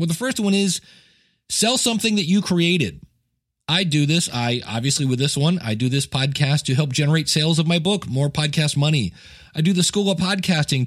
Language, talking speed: English, 210 wpm